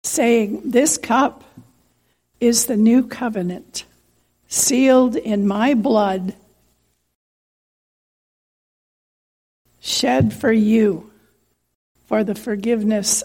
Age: 60-79